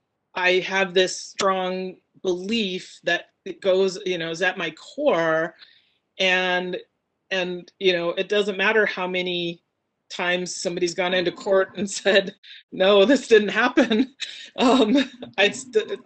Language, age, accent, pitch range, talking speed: English, 30-49, American, 170-205 Hz, 135 wpm